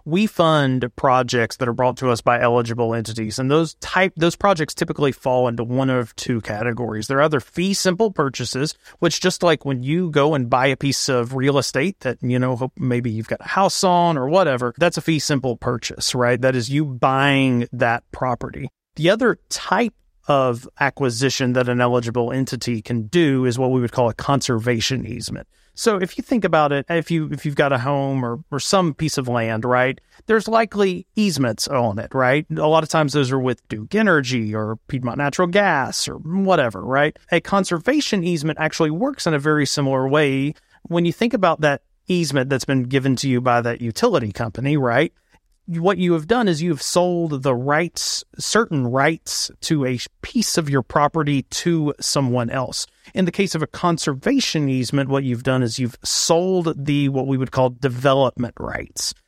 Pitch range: 125-170 Hz